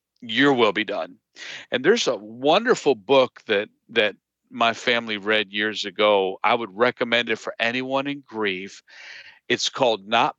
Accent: American